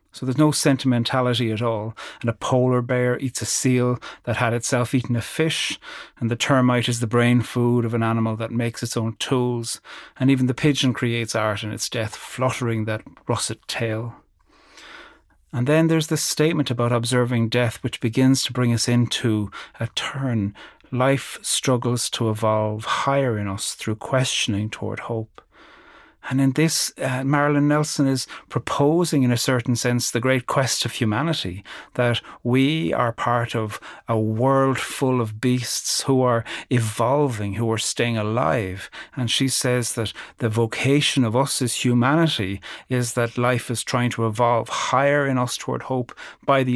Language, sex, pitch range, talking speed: English, male, 115-135 Hz, 170 wpm